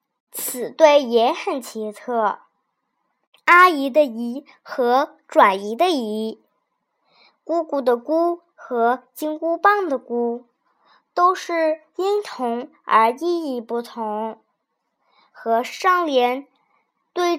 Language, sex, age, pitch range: Chinese, male, 10-29, 245-335 Hz